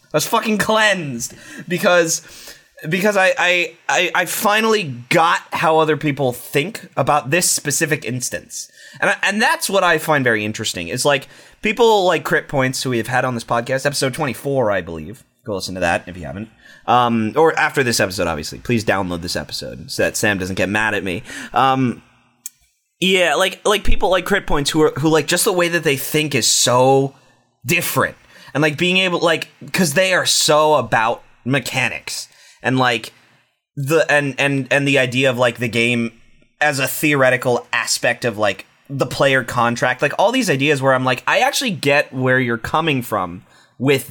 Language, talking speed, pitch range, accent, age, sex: English, 190 wpm, 120-155 Hz, American, 20-39, male